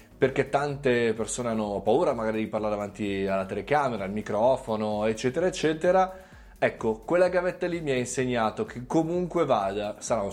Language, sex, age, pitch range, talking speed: Italian, male, 30-49, 110-165 Hz, 155 wpm